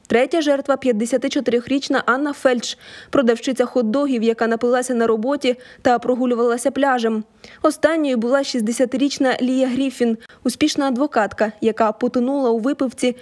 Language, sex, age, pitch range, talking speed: Ukrainian, female, 20-39, 230-280 Hz, 115 wpm